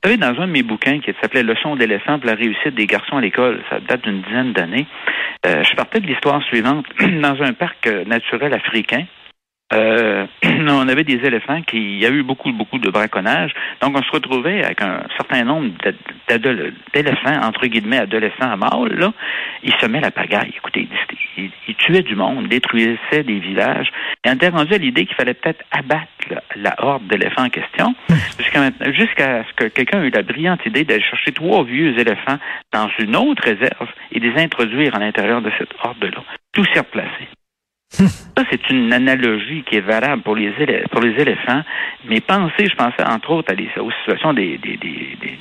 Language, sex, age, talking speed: French, male, 60-79, 195 wpm